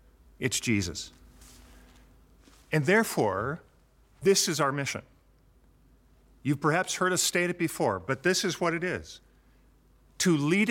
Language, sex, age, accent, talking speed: English, male, 50-69, American, 130 wpm